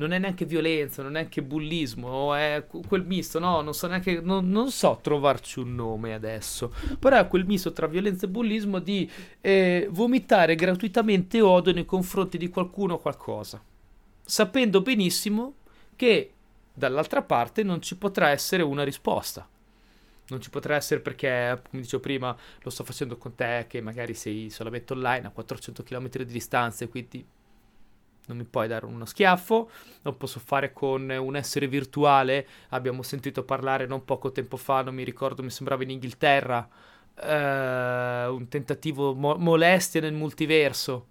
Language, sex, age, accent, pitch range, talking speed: Italian, male, 30-49, native, 130-180 Hz, 160 wpm